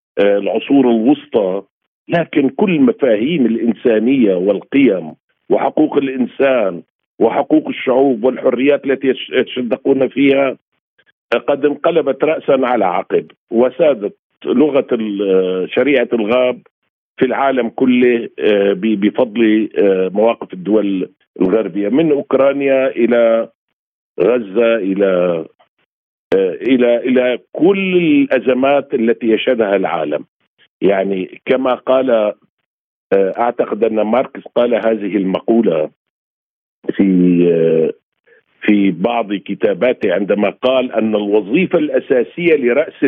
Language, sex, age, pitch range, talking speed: Arabic, male, 50-69, 105-145 Hz, 85 wpm